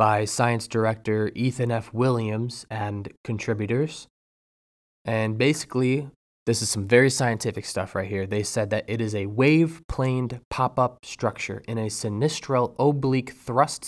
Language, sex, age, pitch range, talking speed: English, male, 20-39, 105-120 Hz, 140 wpm